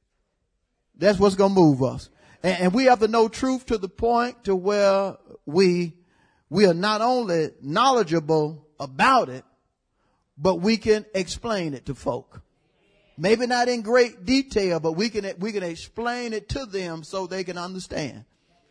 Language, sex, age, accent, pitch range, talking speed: English, male, 40-59, American, 170-230 Hz, 160 wpm